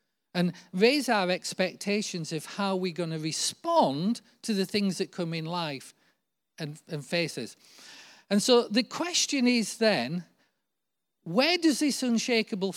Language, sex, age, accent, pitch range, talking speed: English, male, 40-59, British, 165-235 Hz, 140 wpm